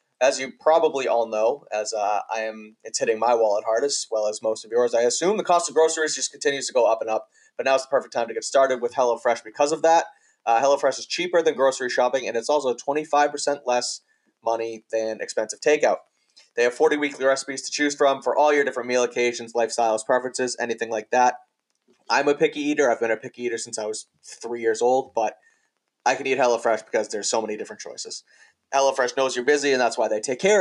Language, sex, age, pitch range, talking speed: English, male, 20-39, 115-145 Hz, 235 wpm